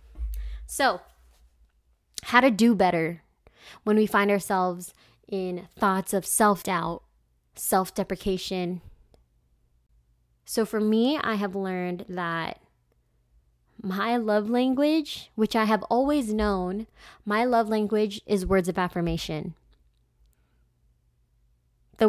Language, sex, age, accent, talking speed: English, female, 20-39, American, 100 wpm